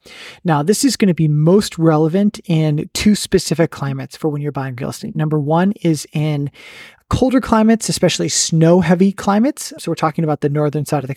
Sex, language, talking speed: male, English, 200 wpm